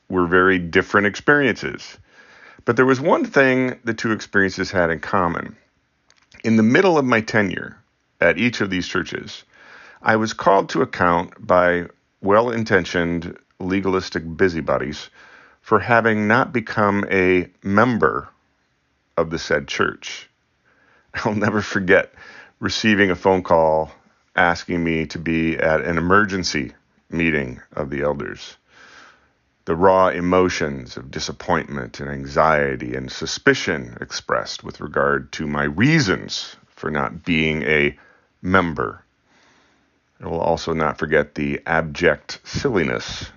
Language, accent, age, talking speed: English, American, 50-69, 125 wpm